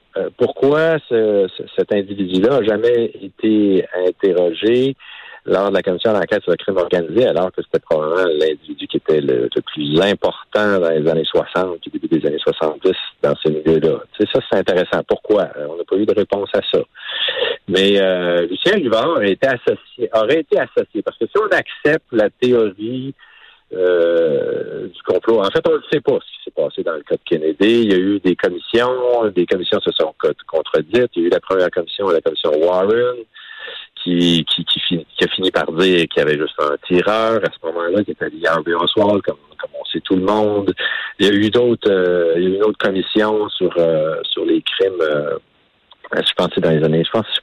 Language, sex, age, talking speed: French, male, 50-69, 210 wpm